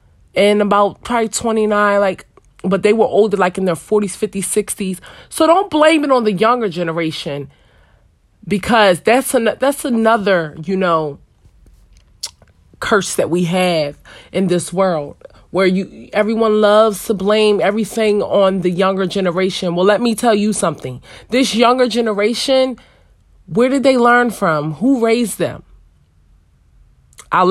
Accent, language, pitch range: American, English, 165-230 Hz